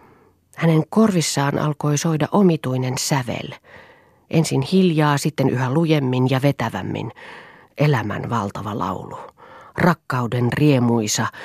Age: 30-49